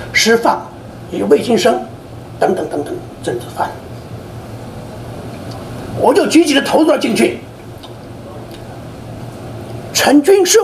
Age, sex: 50-69, male